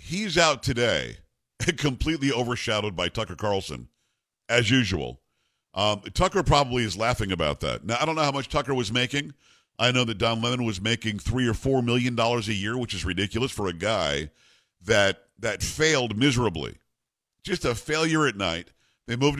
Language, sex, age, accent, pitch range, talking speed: English, male, 50-69, American, 100-135 Hz, 175 wpm